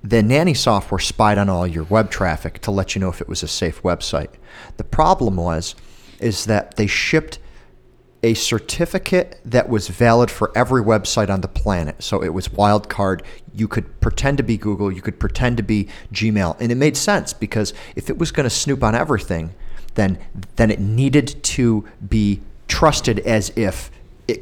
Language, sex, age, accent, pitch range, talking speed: English, male, 40-59, American, 100-125 Hz, 185 wpm